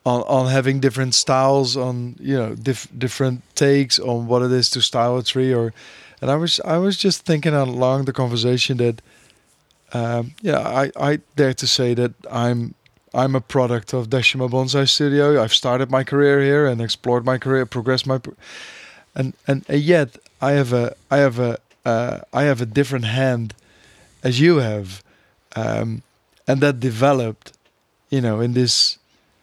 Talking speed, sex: 175 wpm, male